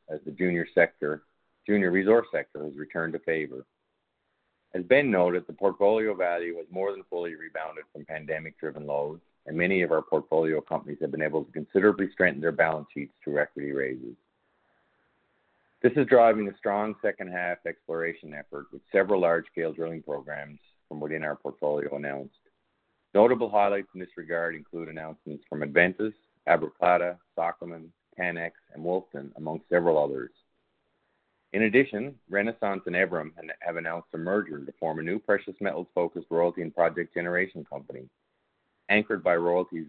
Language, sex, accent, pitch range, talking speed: English, male, American, 75-90 Hz, 155 wpm